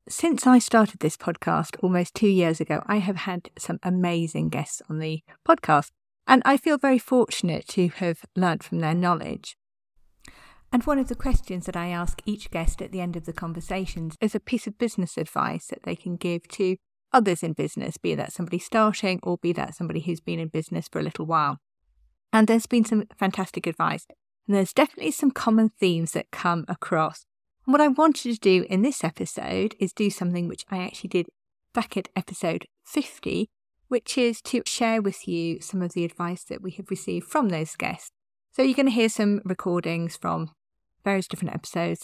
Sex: female